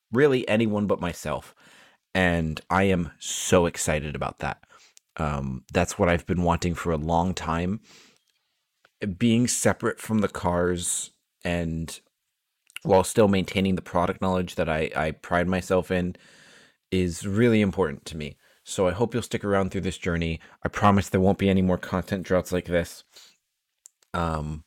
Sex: male